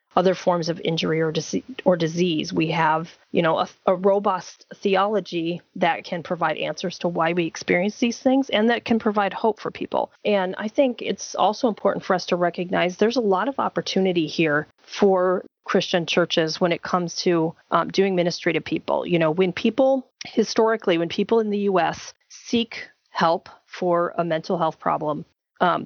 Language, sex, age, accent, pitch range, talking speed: English, female, 30-49, American, 165-200 Hz, 180 wpm